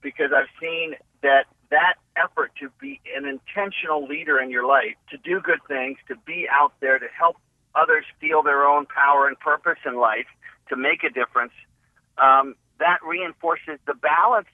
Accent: American